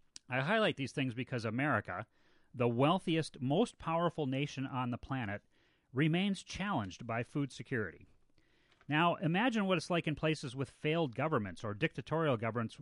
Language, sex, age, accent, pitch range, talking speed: English, male, 40-59, American, 120-155 Hz, 150 wpm